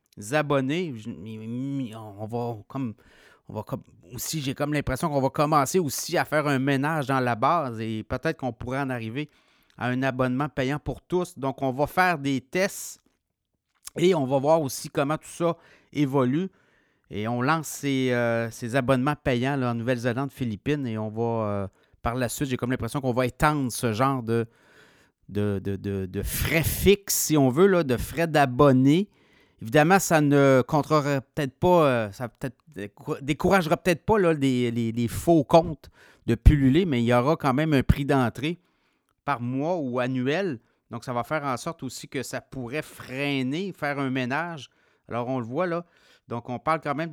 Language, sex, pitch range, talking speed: French, male, 125-155 Hz, 185 wpm